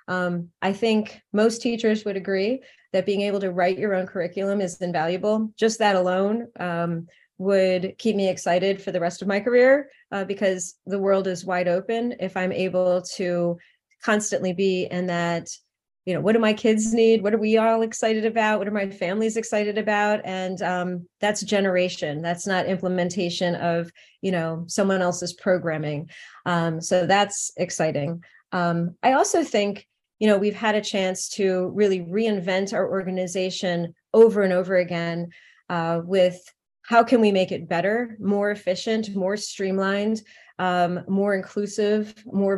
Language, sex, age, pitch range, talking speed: English, female, 30-49, 180-215 Hz, 165 wpm